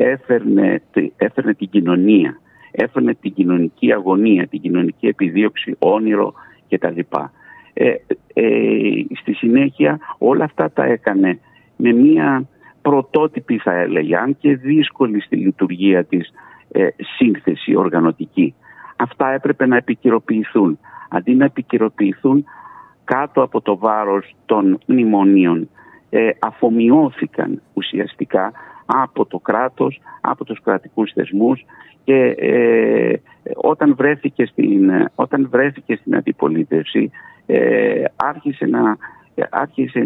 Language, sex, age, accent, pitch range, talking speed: Greek, male, 50-69, Italian, 100-150 Hz, 105 wpm